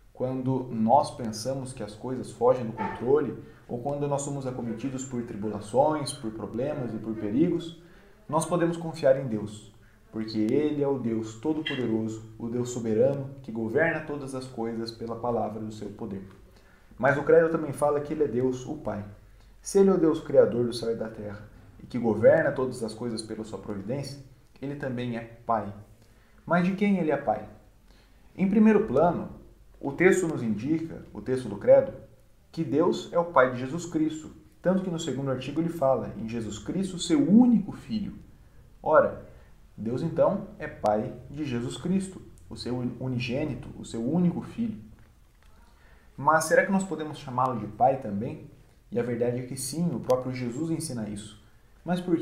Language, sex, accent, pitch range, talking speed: Portuguese, male, Brazilian, 110-155 Hz, 180 wpm